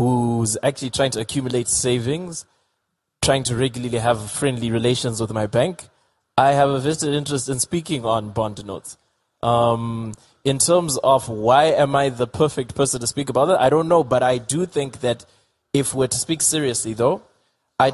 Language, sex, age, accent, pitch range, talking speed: English, male, 20-39, South African, 110-130 Hz, 180 wpm